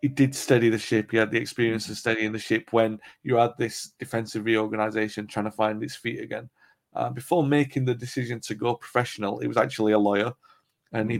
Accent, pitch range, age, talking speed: British, 110-130 Hz, 40-59, 215 wpm